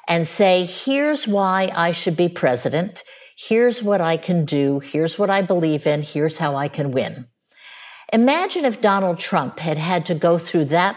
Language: English